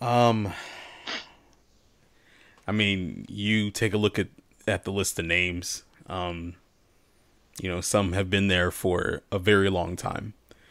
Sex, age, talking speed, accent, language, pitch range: male, 20-39, 140 wpm, American, English, 95-110 Hz